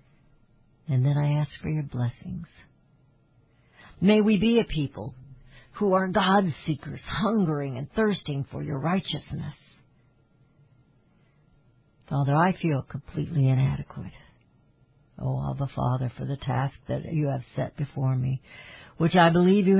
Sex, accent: female, American